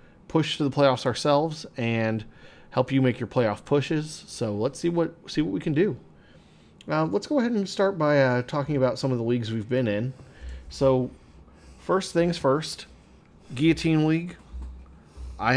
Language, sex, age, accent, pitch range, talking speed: English, male, 40-59, American, 105-140 Hz, 175 wpm